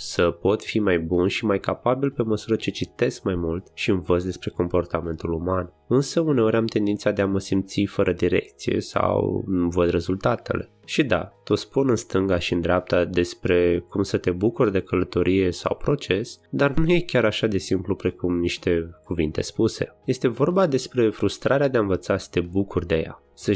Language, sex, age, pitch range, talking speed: Romanian, male, 20-39, 85-110 Hz, 190 wpm